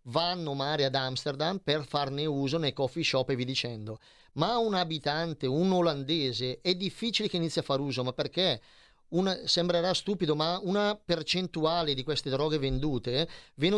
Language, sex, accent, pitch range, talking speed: Italian, male, native, 140-180 Hz, 160 wpm